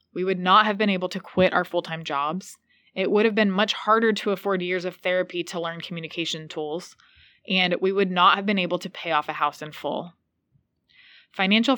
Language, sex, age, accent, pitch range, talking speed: English, female, 20-39, American, 170-215 Hz, 210 wpm